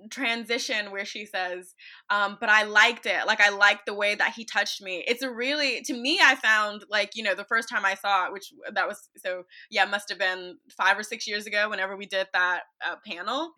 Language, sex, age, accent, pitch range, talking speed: English, female, 20-39, American, 200-260 Hz, 240 wpm